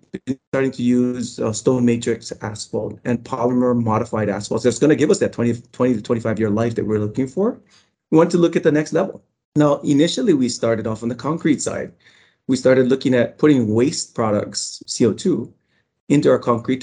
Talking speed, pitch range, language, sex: 200 wpm, 115-140 Hz, English, male